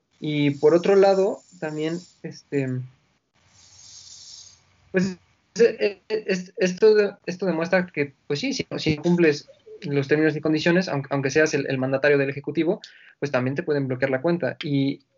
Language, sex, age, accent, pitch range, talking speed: Spanish, male, 20-39, Mexican, 140-170 Hz, 150 wpm